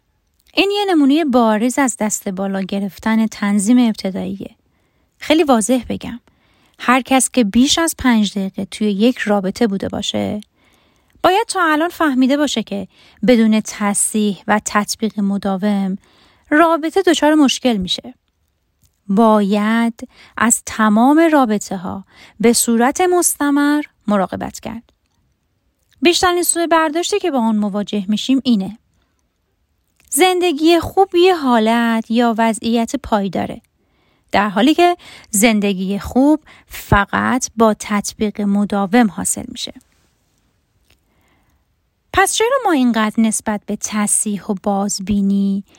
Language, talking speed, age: Persian, 115 wpm, 30-49